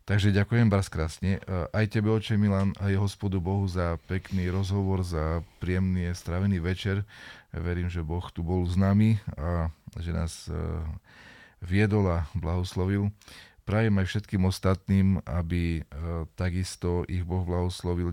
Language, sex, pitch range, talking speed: Slovak, male, 85-100 Hz, 130 wpm